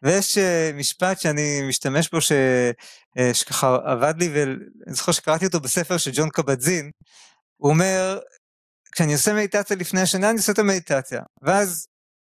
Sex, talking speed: male, 140 wpm